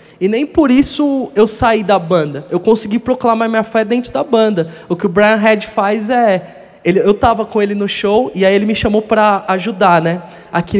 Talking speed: 215 wpm